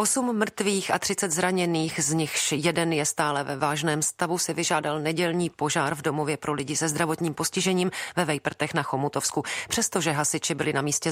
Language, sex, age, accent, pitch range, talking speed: Czech, female, 40-59, native, 145-175 Hz, 180 wpm